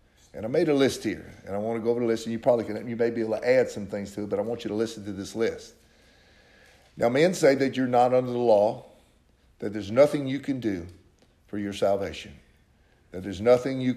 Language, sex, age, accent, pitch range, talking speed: English, male, 50-69, American, 100-135 Hz, 255 wpm